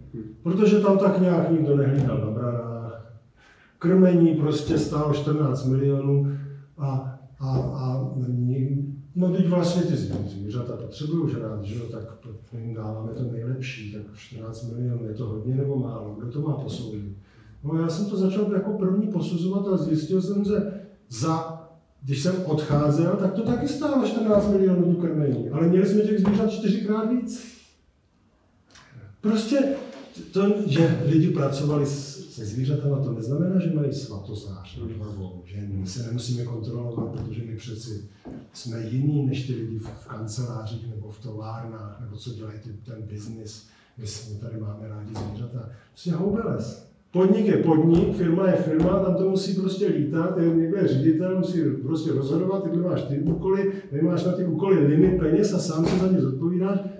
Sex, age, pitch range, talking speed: male, 40-59, 115-185 Hz, 160 wpm